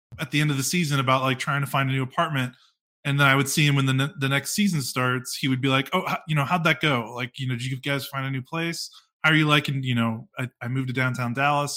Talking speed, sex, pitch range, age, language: 305 wpm, male, 115-140 Hz, 20-39, English